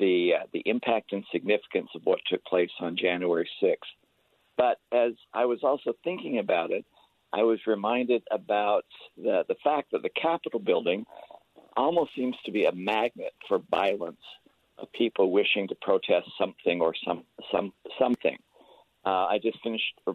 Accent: American